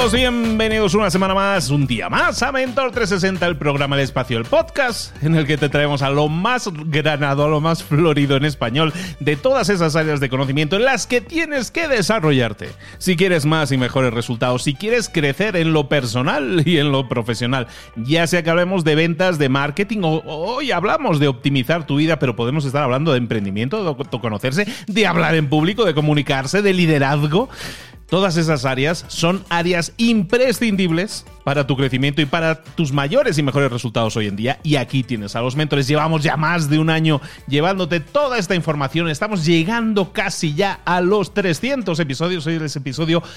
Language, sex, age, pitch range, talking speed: Spanish, male, 30-49, 140-195 Hz, 190 wpm